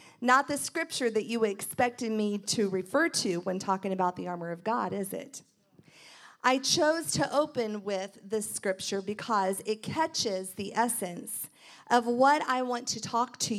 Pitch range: 205-265 Hz